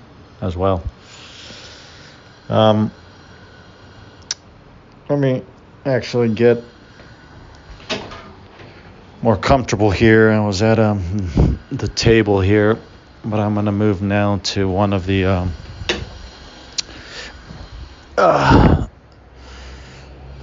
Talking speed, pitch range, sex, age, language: 80 wpm, 80-105 Hz, male, 50-69, English